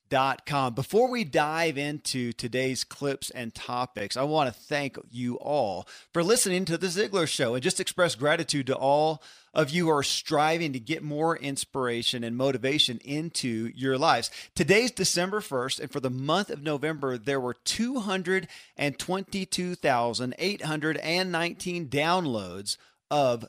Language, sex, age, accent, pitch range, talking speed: English, male, 40-59, American, 130-175 Hz, 145 wpm